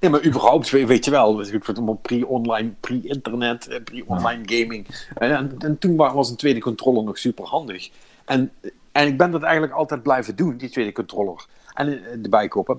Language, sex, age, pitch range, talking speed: Dutch, male, 50-69, 105-150 Hz, 190 wpm